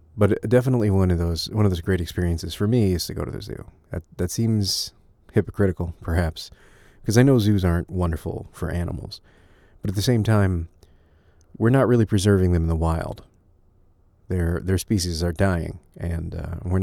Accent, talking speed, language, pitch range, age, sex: American, 185 wpm, English, 85-110 Hz, 30-49, male